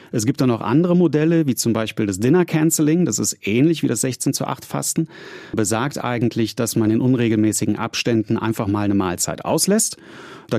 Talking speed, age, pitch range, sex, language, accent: 195 wpm, 30-49, 105-140 Hz, male, German, German